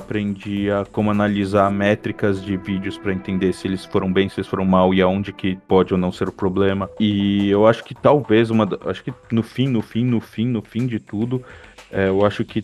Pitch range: 95-105 Hz